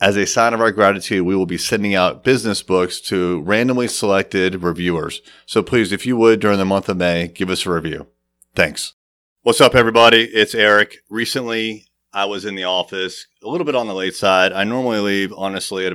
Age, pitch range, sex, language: 30-49, 90-110 Hz, male, English